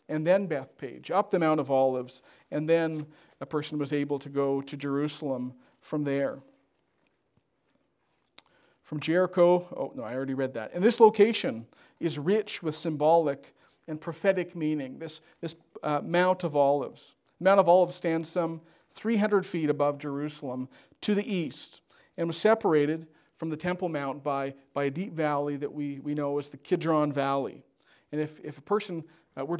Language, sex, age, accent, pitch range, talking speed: English, male, 40-59, American, 140-170 Hz, 165 wpm